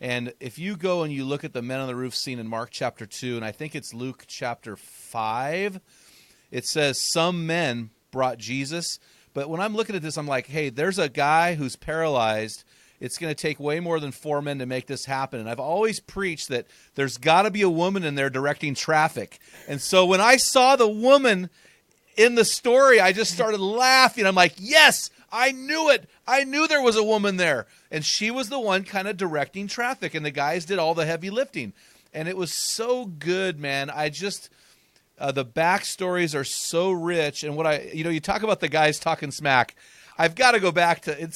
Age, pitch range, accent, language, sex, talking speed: 40-59, 140-190 Hz, American, English, male, 215 wpm